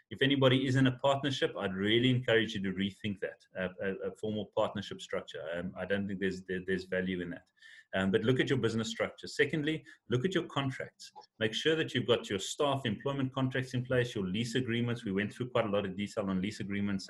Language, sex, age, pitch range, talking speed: English, male, 30-49, 100-130 Hz, 230 wpm